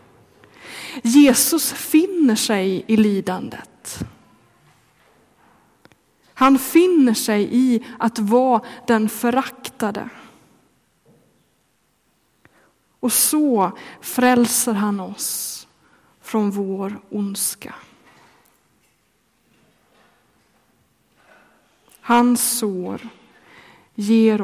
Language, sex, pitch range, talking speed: Swedish, female, 220-260 Hz, 60 wpm